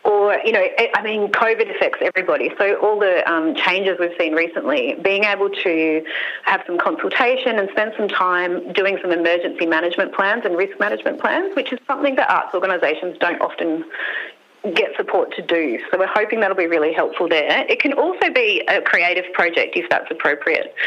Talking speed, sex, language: 185 wpm, female, English